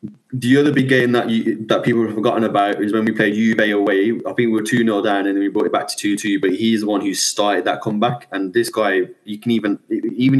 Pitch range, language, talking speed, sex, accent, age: 100-130 Hz, English, 260 wpm, male, British, 20-39